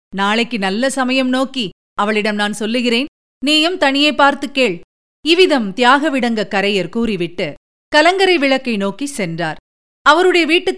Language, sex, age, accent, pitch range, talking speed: Tamil, female, 50-69, native, 205-290 Hz, 115 wpm